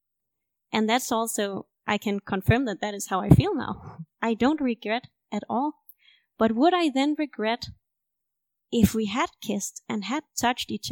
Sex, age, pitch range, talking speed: female, 20-39, 200-250 Hz, 170 wpm